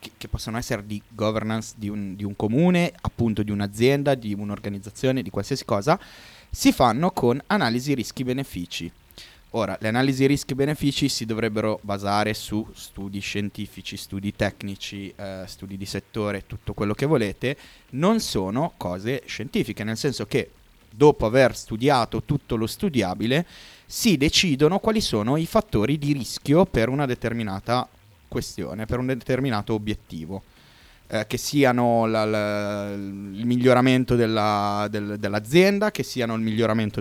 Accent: native